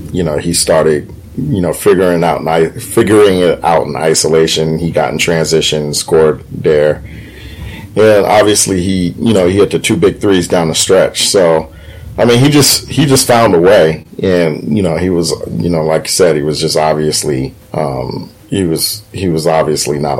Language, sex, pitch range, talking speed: English, male, 80-95 Hz, 195 wpm